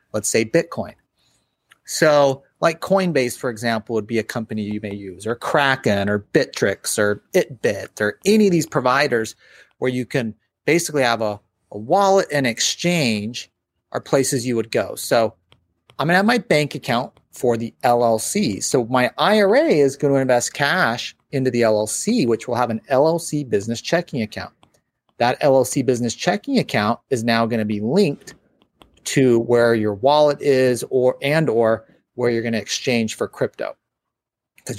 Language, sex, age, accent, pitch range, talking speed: English, male, 30-49, American, 110-145 Hz, 170 wpm